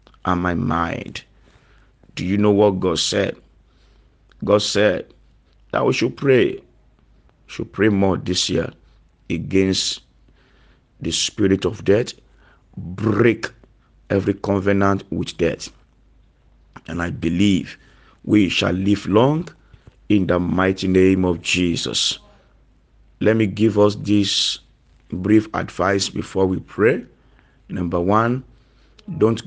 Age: 50-69